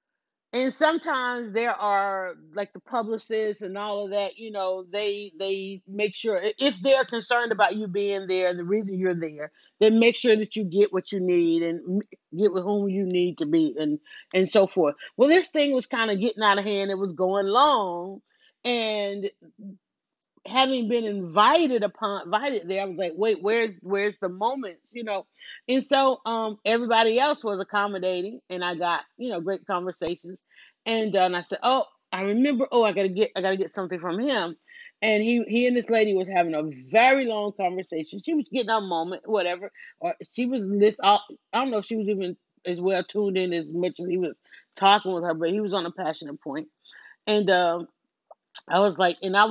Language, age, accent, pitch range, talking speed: English, 40-59, American, 185-235 Hz, 205 wpm